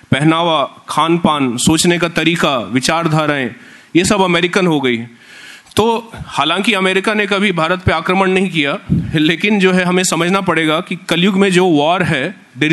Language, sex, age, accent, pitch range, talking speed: Hindi, male, 30-49, native, 160-195 Hz, 165 wpm